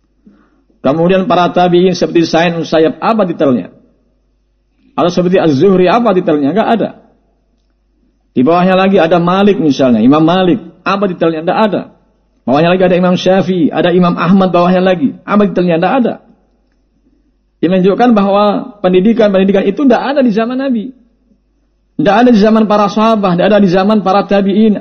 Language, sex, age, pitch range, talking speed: Indonesian, male, 50-69, 155-220 Hz, 150 wpm